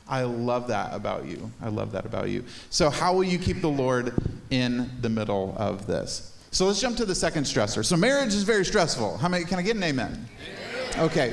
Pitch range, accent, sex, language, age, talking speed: 120-165 Hz, American, male, English, 30-49, 220 wpm